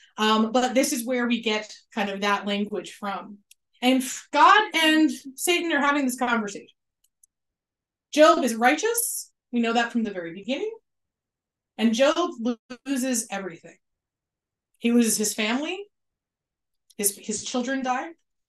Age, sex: 30-49, female